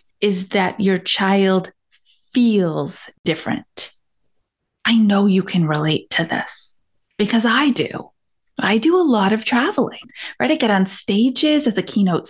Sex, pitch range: female, 185-255 Hz